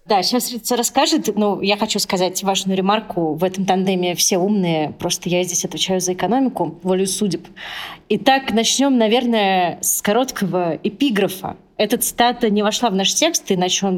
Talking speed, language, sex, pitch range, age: 165 wpm, Russian, female, 180-225 Hz, 30-49